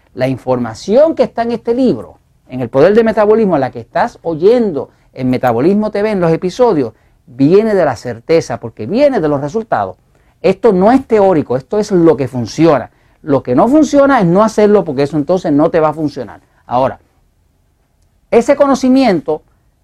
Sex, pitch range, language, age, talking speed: male, 130-220 Hz, Spanish, 50-69, 180 wpm